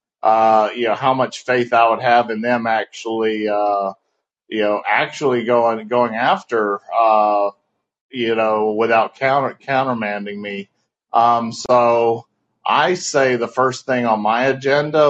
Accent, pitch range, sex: American, 105-120 Hz, male